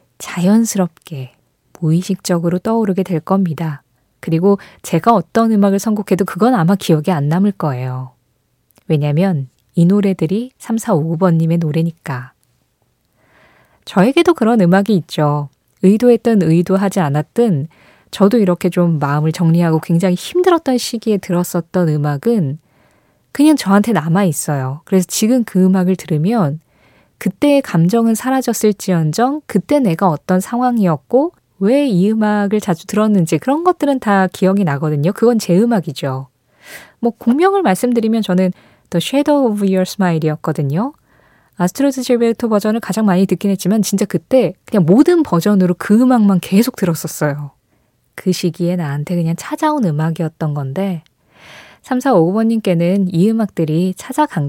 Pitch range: 160-225 Hz